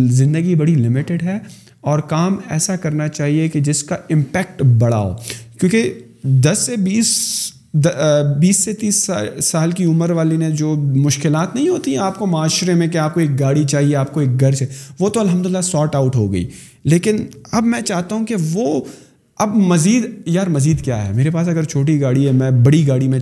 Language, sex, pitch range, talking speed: Urdu, male, 135-180 Hz, 195 wpm